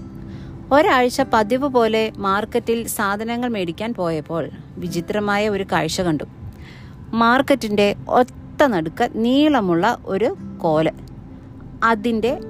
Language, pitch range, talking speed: Malayalam, 185-245 Hz, 85 wpm